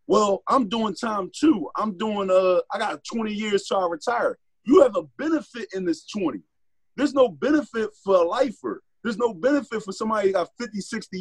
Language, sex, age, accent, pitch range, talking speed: English, male, 30-49, American, 185-295 Hz, 205 wpm